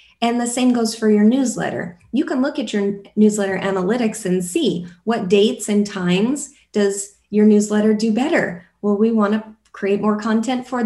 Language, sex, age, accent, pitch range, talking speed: English, female, 30-49, American, 190-230 Hz, 180 wpm